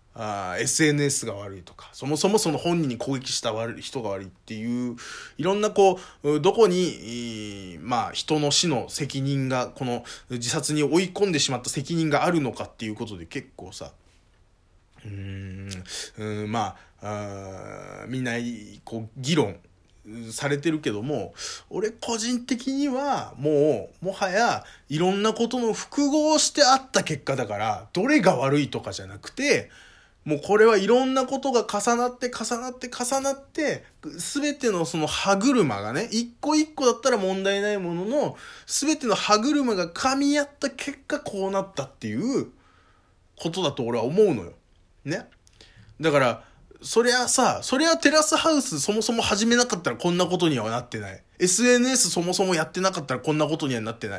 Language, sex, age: Japanese, male, 20-39